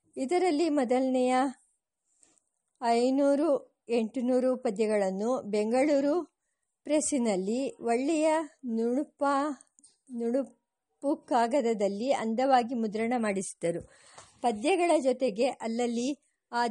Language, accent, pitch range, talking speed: English, Indian, 225-275 Hz, 60 wpm